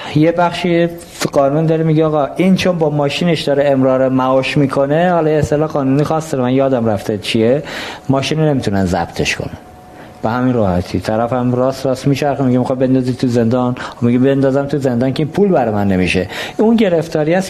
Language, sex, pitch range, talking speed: Persian, male, 120-150 Hz, 180 wpm